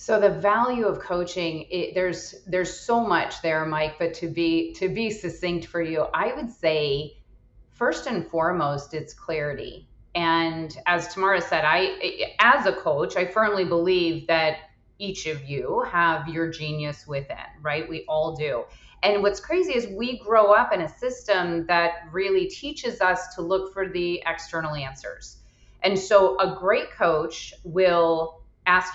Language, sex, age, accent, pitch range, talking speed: English, female, 30-49, American, 165-205 Hz, 160 wpm